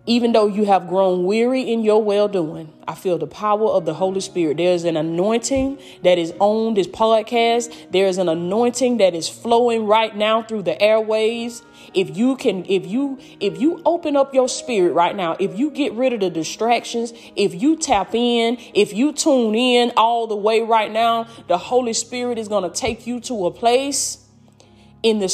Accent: American